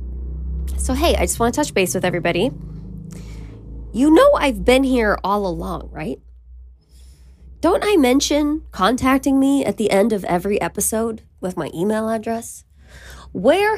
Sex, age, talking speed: female, 20-39, 150 wpm